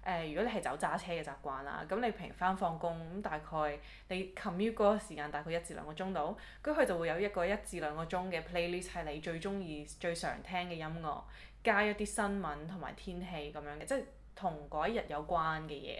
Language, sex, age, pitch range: Chinese, female, 20-39, 150-185 Hz